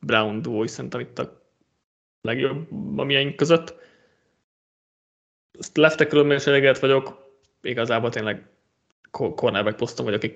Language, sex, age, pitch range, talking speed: Hungarian, male, 20-39, 120-145 Hz, 110 wpm